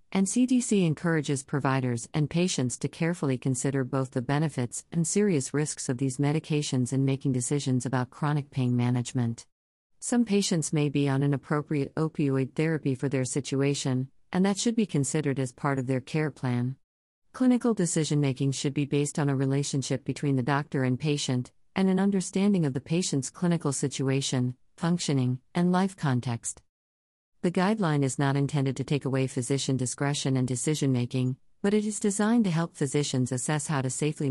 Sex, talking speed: female, 170 wpm